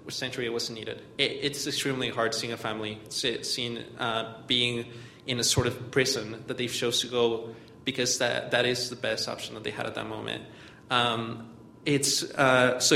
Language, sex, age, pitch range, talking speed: English, male, 20-39, 115-130 Hz, 190 wpm